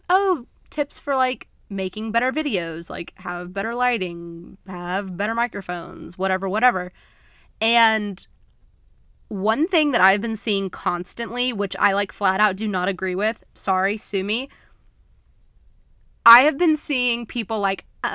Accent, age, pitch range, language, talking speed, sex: American, 20-39, 190-245 Hz, English, 140 wpm, female